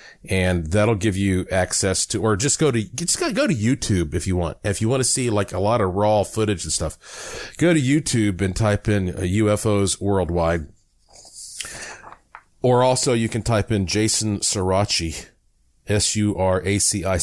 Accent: American